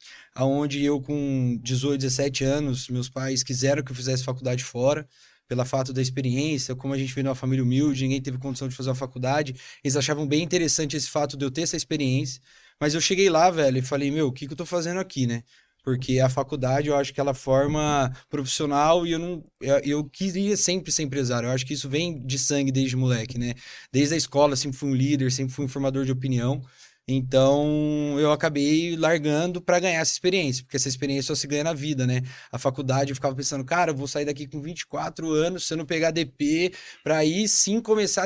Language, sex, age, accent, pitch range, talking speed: Portuguese, male, 20-39, Brazilian, 135-165 Hz, 215 wpm